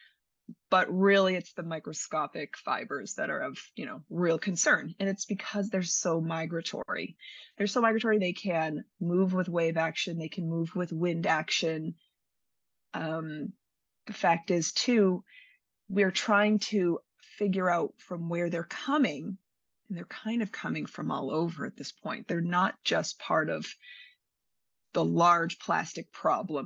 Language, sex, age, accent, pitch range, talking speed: English, female, 30-49, American, 165-210 Hz, 155 wpm